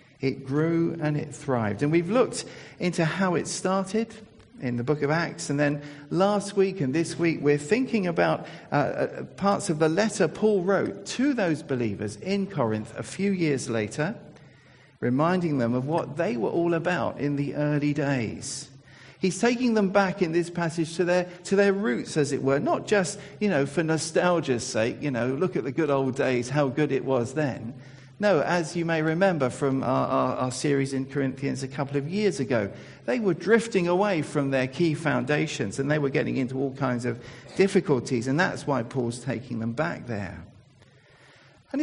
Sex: male